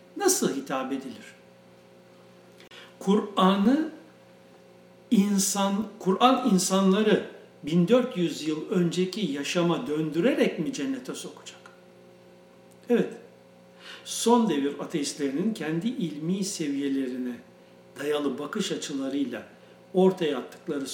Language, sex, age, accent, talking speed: Turkish, male, 60-79, native, 75 wpm